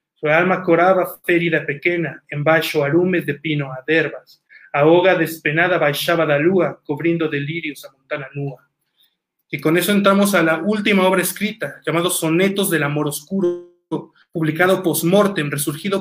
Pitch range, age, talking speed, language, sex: 150-180 Hz, 30-49, 150 wpm, Spanish, male